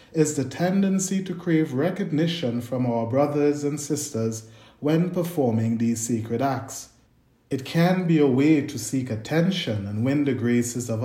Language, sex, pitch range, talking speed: English, male, 120-160 Hz, 155 wpm